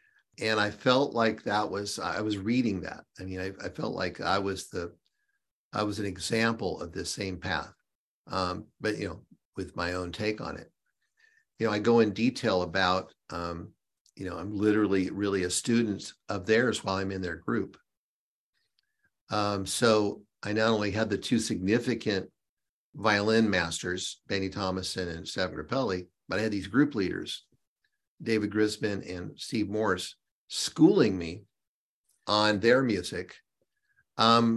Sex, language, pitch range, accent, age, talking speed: male, English, 95-115 Hz, American, 50-69, 160 wpm